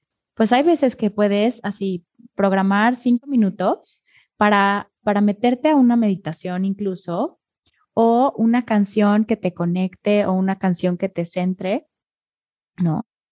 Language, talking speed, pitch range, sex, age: Spanish, 130 wpm, 180-235 Hz, female, 20-39